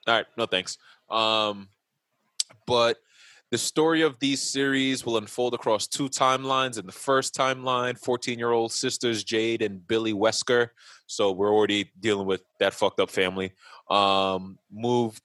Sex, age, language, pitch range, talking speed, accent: male, 20-39, English, 100-125 Hz, 155 wpm, American